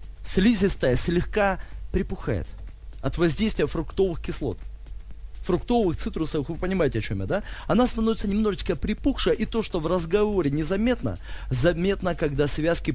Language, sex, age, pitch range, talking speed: Russian, male, 20-39, 125-175 Hz, 130 wpm